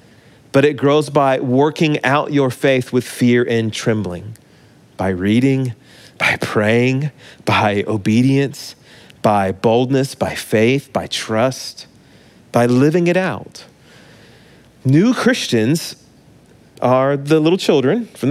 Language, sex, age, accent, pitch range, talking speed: English, male, 30-49, American, 125-165 Hz, 115 wpm